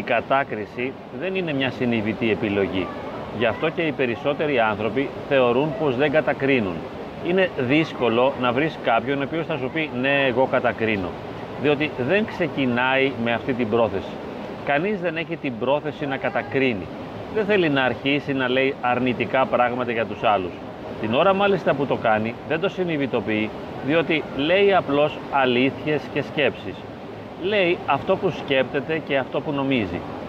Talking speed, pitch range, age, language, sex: 155 wpm, 125-155 Hz, 30-49, Greek, male